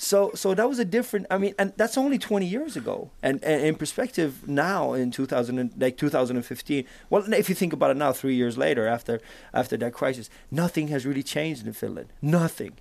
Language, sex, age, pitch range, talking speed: Finnish, male, 30-49, 120-155 Hz, 225 wpm